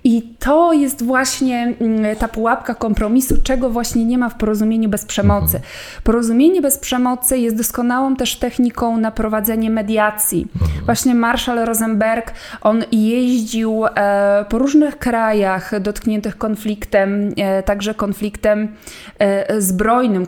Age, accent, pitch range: 20-39, native, 200-235 Hz